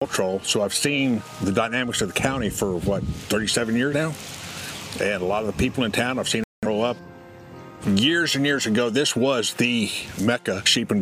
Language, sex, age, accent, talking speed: English, male, 60-79, American, 190 wpm